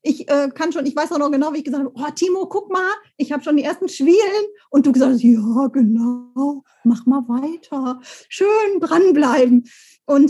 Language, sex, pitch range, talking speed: German, female, 245-320 Hz, 205 wpm